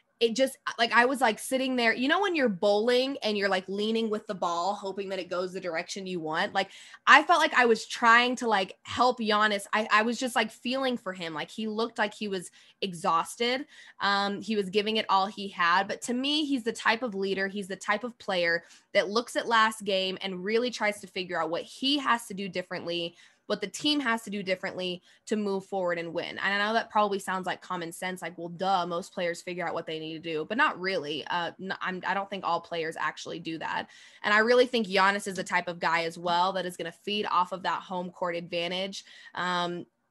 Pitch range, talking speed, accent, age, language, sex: 180-225 Hz, 245 wpm, American, 20-39, English, female